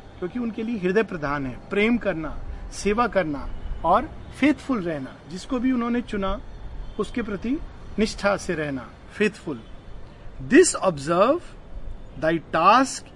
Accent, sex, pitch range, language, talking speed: native, male, 160-230 Hz, Hindi, 115 wpm